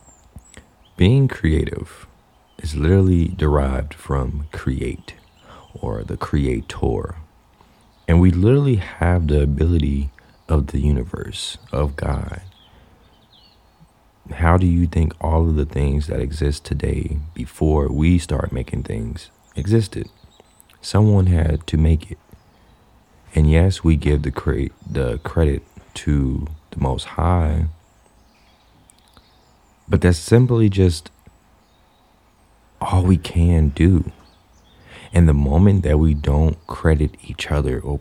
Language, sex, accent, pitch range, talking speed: English, male, American, 75-95 Hz, 115 wpm